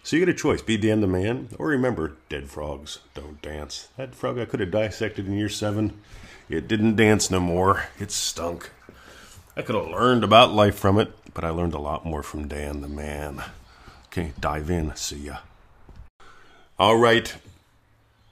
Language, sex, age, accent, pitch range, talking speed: English, male, 40-59, American, 80-105 Hz, 180 wpm